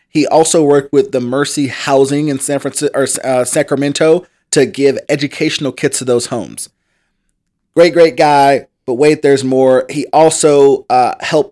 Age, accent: 30-49, American